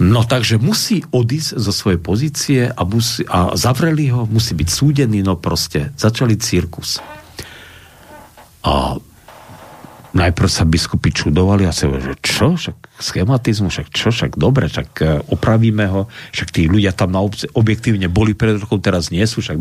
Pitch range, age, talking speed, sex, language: 90-120 Hz, 50-69, 160 wpm, male, Slovak